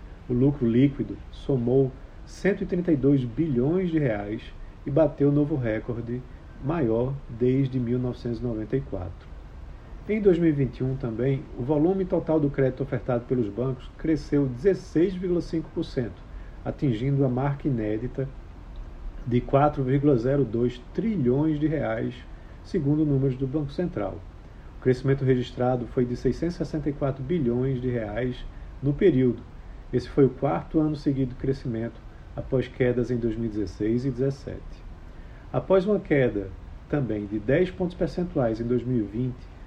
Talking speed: 115 wpm